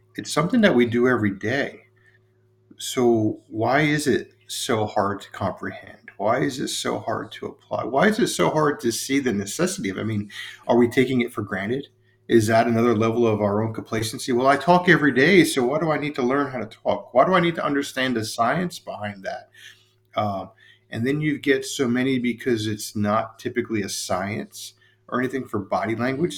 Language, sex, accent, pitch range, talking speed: English, male, American, 110-135 Hz, 205 wpm